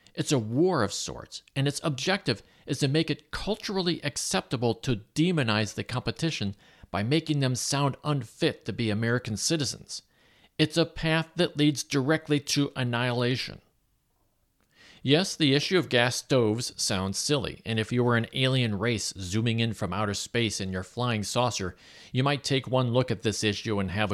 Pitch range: 105-145 Hz